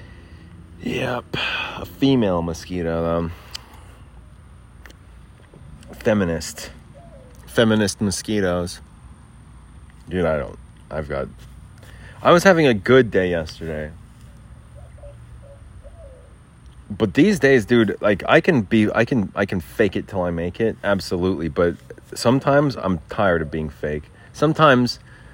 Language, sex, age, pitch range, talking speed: English, male, 30-49, 85-110 Hz, 110 wpm